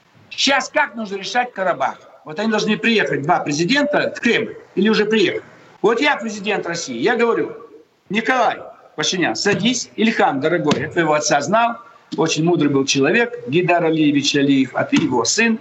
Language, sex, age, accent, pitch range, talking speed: Russian, male, 60-79, native, 175-255 Hz, 160 wpm